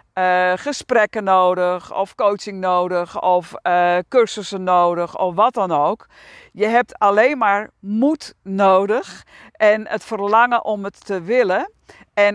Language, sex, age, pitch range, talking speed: Dutch, female, 50-69, 180-230 Hz, 135 wpm